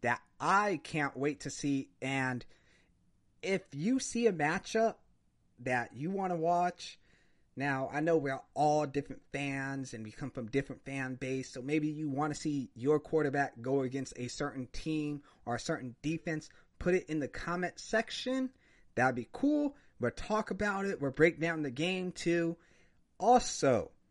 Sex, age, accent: male, 30-49, American